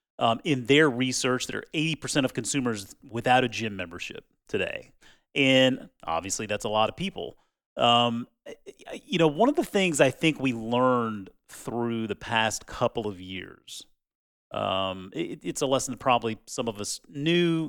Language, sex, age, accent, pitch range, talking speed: English, male, 30-49, American, 110-145 Hz, 165 wpm